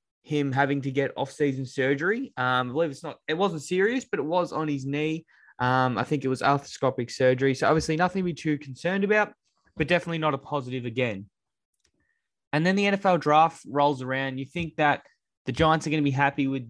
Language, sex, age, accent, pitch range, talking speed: English, male, 10-29, Australian, 120-155 Hz, 210 wpm